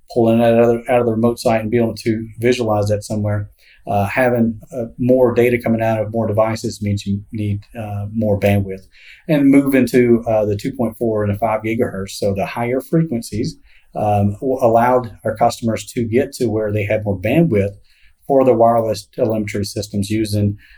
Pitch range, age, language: 105-120 Hz, 40-59, English